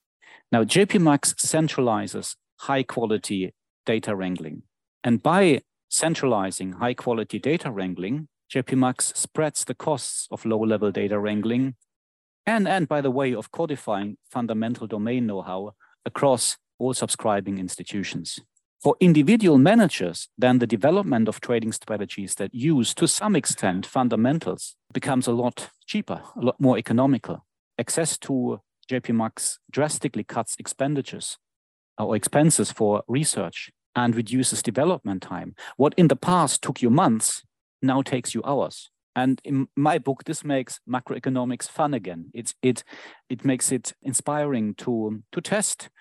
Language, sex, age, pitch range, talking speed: English, male, 40-59, 110-145 Hz, 130 wpm